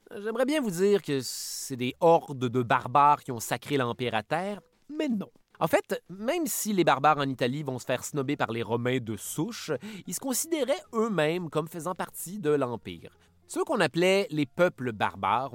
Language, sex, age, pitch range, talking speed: French, male, 30-49, 125-185 Hz, 195 wpm